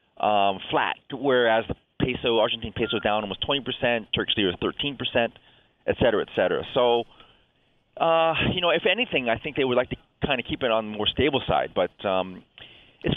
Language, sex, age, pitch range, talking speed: English, male, 40-59, 105-145 Hz, 200 wpm